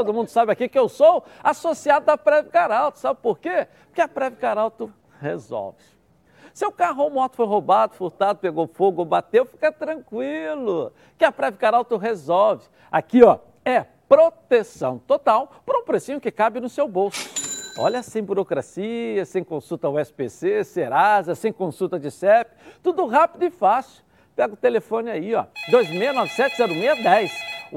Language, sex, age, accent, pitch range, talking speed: Portuguese, male, 60-79, Brazilian, 195-290 Hz, 155 wpm